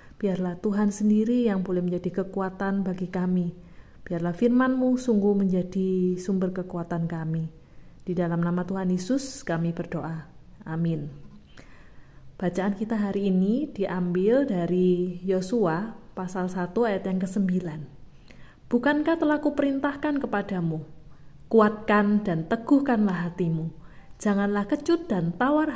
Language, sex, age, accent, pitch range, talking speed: Indonesian, female, 30-49, native, 175-220 Hz, 110 wpm